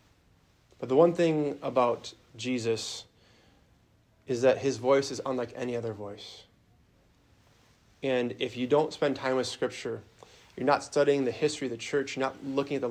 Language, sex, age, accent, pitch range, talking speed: English, male, 30-49, American, 110-135 Hz, 165 wpm